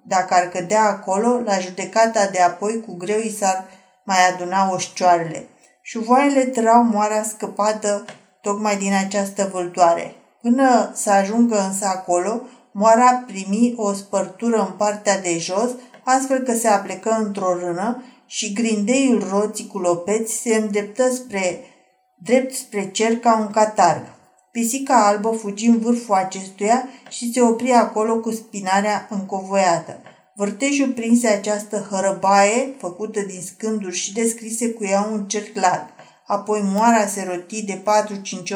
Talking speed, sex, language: 135 wpm, female, Romanian